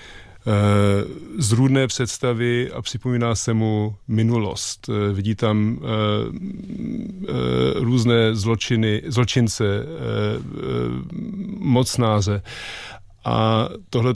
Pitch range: 110-120 Hz